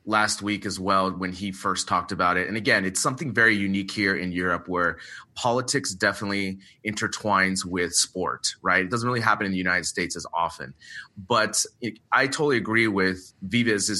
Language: English